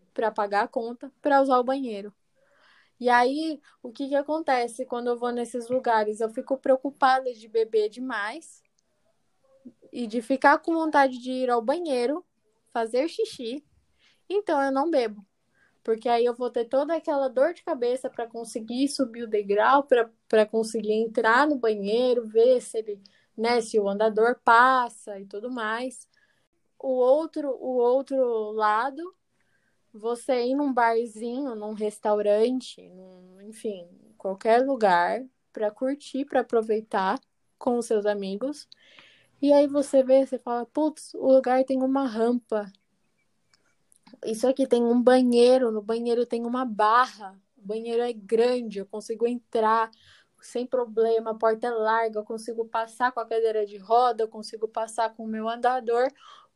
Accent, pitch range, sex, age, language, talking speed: Brazilian, 225-265 Hz, female, 10-29, Portuguese, 150 wpm